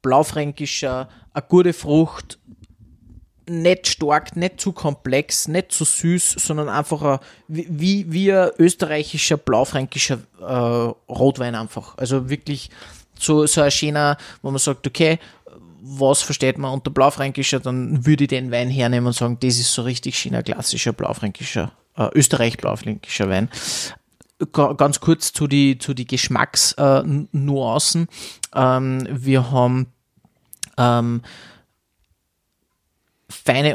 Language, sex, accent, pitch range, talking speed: German, male, Austrian, 130-155 Hz, 125 wpm